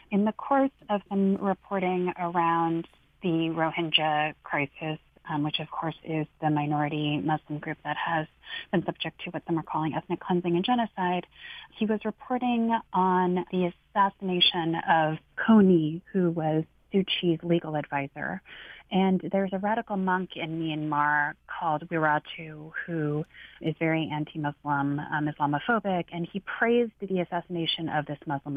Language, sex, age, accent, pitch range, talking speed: English, female, 30-49, American, 155-190 Hz, 145 wpm